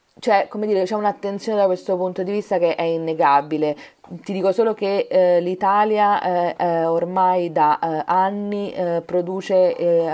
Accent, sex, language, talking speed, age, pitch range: native, female, Italian, 140 wpm, 30-49, 160-185 Hz